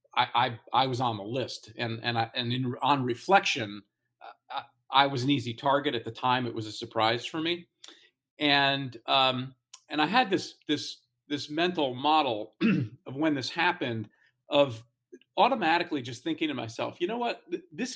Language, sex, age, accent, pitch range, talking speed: English, male, 40-59, American, 115-145 Hz, 175 wpm